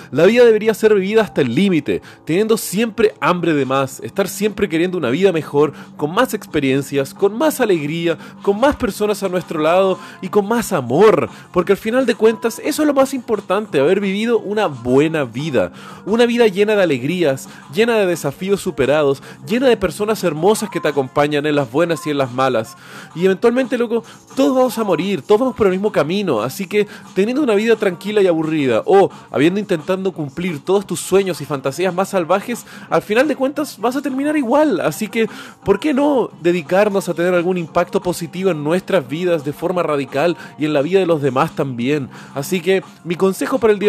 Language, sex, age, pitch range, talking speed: Spanish, male, 30-49, 160-215 Hz, 200 wpm